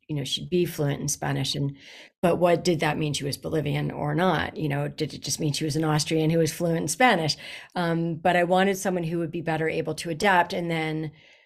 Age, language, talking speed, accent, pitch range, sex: 40-59, English, 245 wpm, American, 155-195 Hz, female